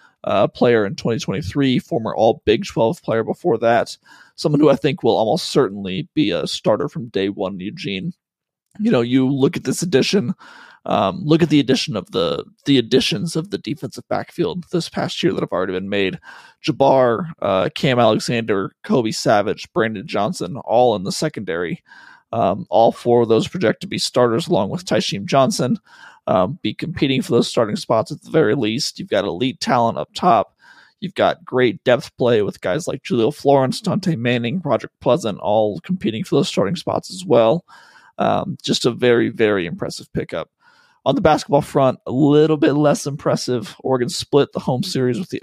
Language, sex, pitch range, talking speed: English, male, 125-180 Hz, 185 wpm